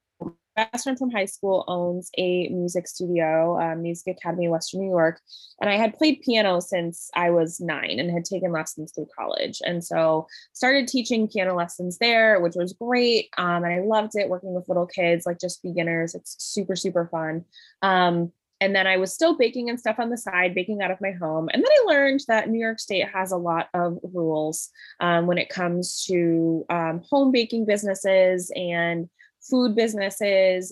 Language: English